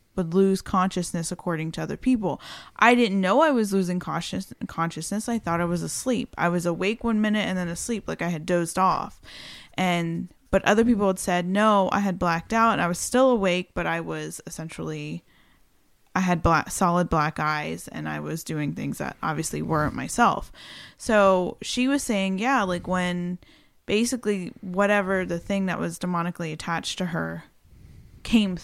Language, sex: English, female